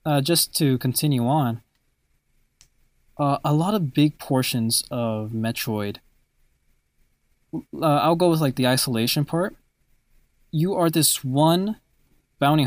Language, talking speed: English, 125 wpm